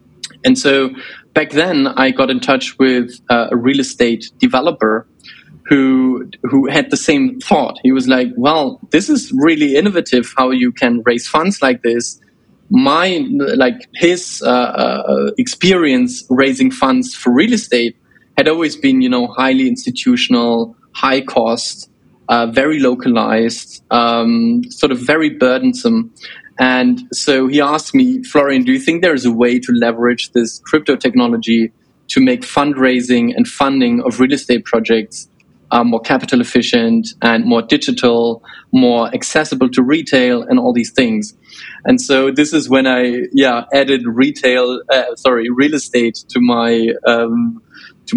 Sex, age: male, 20-39